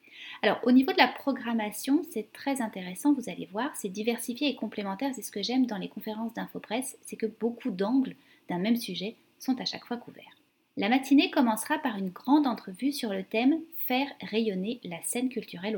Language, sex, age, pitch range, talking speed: French, female, 30-49, 200-270 Hz, 195 wpm